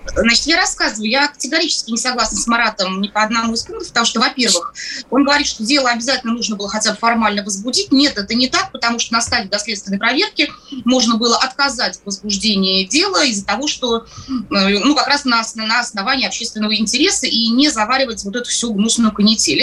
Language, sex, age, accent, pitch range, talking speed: Russian, female, 20-39, native, 210-270 Hz, 185 wpm